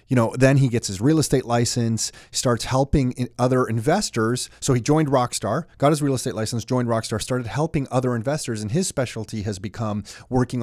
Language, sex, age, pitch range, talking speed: English, male, 30-49, 110-130 Hz, 200 wpm